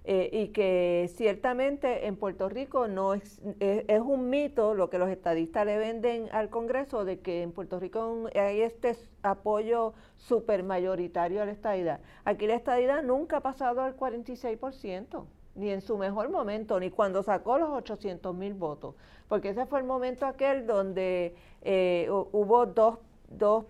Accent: American